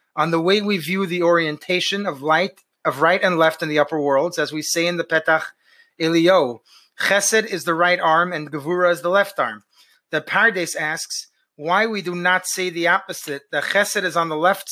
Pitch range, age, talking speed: 160-195 Hz, 30-49, 210 wpm